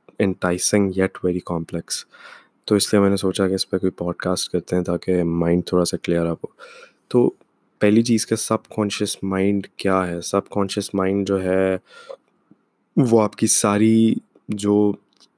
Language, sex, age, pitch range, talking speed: Urdu, male, 20-39, 95-105 Hz, 170 wpm